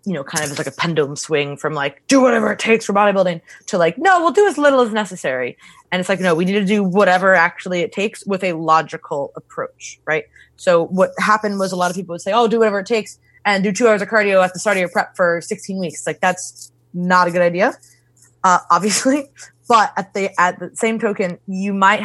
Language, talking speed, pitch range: English, 240 wpm, 155-195 Hz